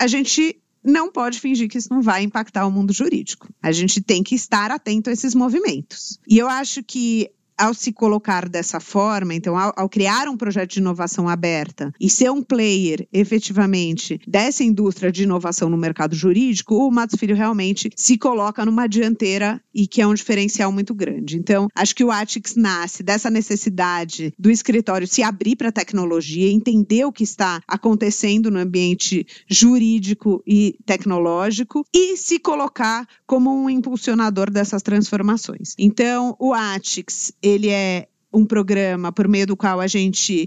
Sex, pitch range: female, 190-235 Hz